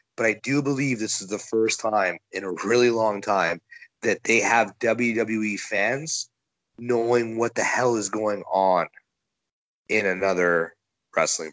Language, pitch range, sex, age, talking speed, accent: English, 100-130 Hz, male, 30-49, 150 wpm, American